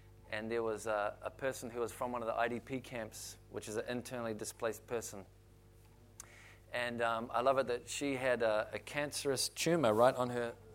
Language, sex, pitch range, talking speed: English, male, 110-135 Hz, 195 wpm